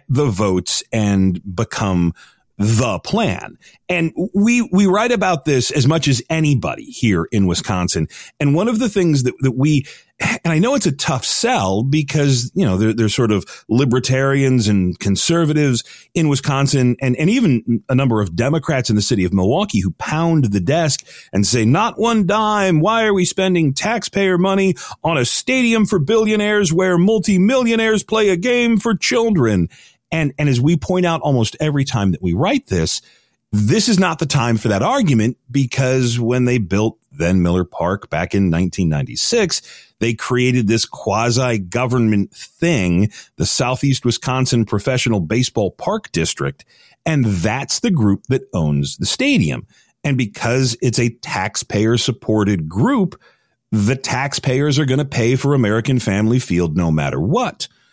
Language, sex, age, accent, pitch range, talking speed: English, male, 40-59, American, 110-165 Hz, 165 wpm